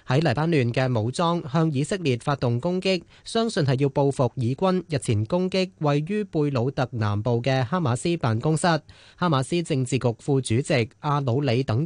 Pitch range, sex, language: 120-165 Hz, male, Chinese